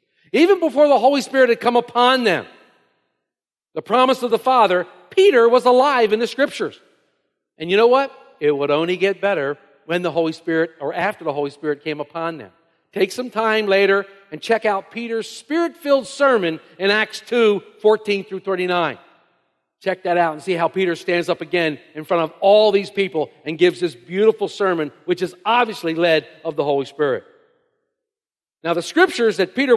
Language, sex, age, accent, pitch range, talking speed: English, male, 50-69, American, 180-285 Hz, 185 wpm